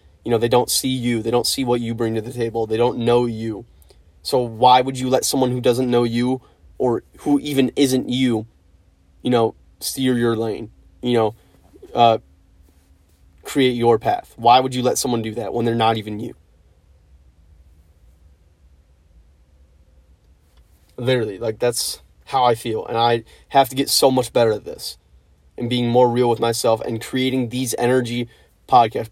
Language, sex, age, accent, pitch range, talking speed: English, male, 30-49, American, 110-125 Hz, 175 wpm